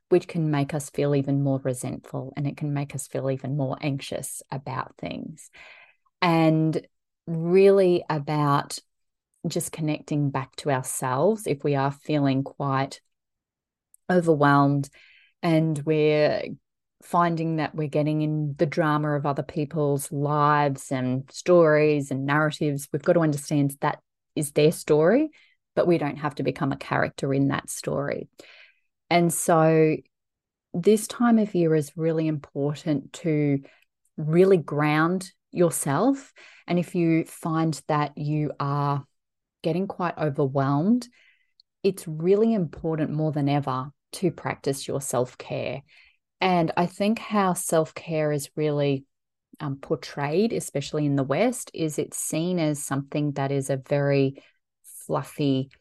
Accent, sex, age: Australian, female, 20-39